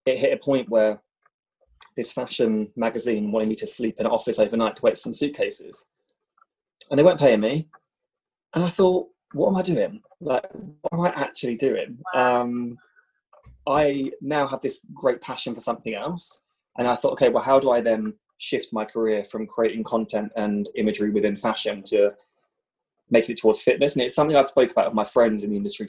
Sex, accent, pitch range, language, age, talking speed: male, British, 110-160 Hz, English, 20-39, 195 wpm